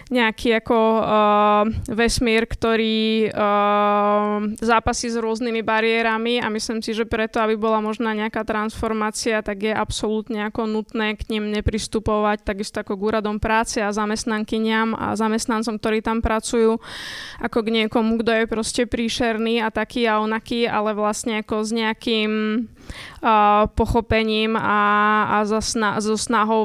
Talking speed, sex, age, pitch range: 135 wpm, female, 20-39, 215-230 Hz